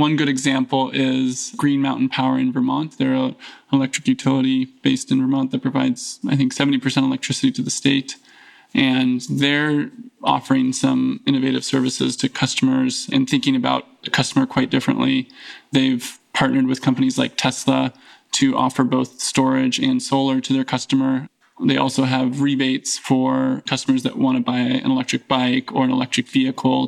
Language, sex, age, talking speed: English, male, 20-39, 160 wpm